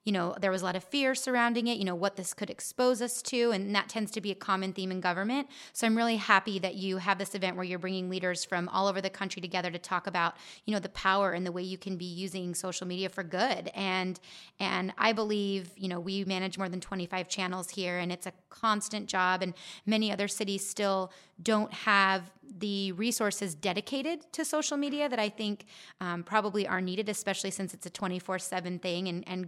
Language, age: English, 30-49